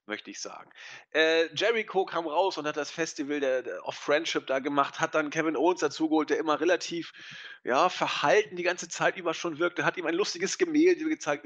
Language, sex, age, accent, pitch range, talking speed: German, male, 30-49, German, 140-225 Hz, 205 wpm